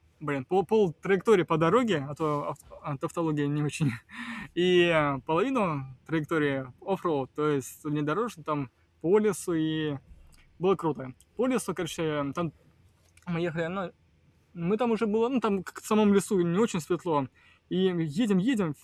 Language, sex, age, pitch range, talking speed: Russian, male, 20-39, 150-195 Hz, 160 wpm